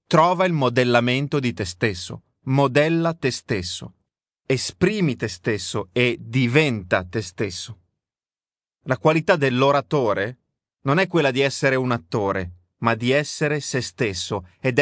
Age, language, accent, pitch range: 30-49, Italian, native, 120-160 Hz